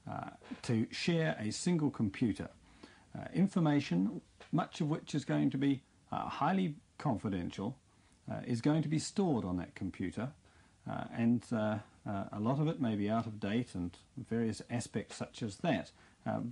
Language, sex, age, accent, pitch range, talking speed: English, male, 50-69, British, 100-130 Hz, 170 wpm